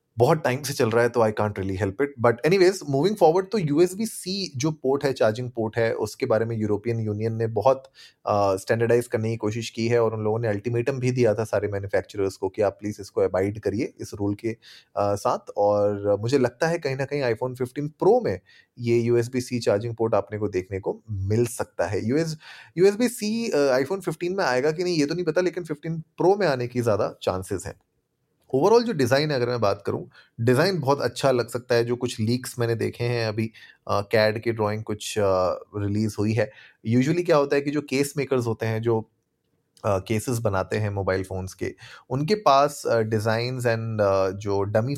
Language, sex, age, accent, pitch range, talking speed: Hindi, male, 30-49, native, 105-135 Hz, 215 wpm